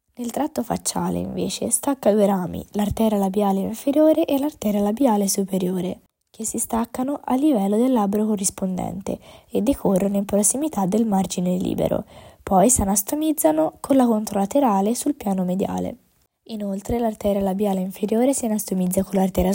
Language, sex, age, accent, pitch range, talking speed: Italian, female, 10-29, native, 190-240 Hz, 140 wpm